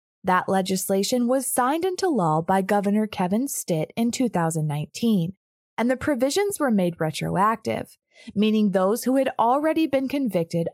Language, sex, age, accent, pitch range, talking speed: English, female, 20-39, American, 180-270 Hz, 140 wpm